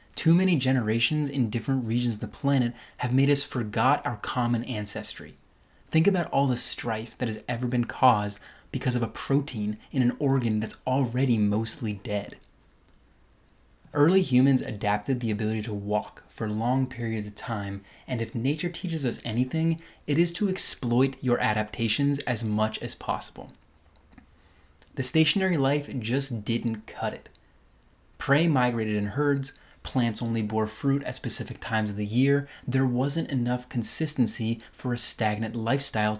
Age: 20-39